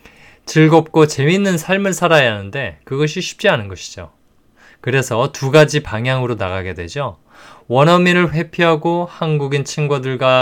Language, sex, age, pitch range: Korean, male, 20-39, 115-160 Hz